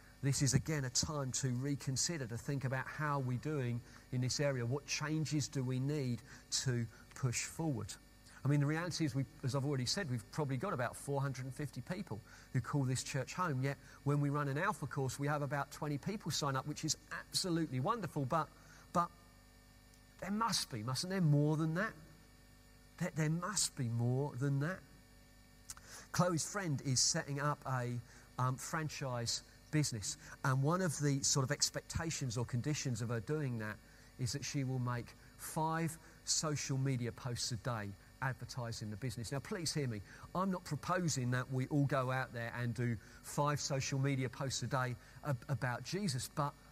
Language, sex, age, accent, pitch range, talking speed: English, male, 40-59, British, 120-145 Hz, 180 wpm